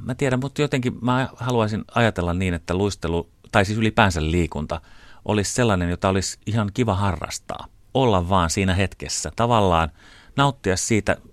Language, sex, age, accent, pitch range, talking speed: Finnish, male, 30-49, native, 85-105 Hz, 150 wpm